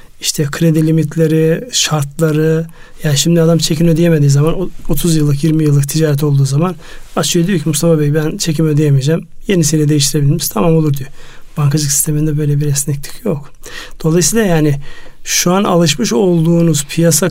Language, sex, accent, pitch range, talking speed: Turkish, male, native, 150-170 Hz, 155 wpm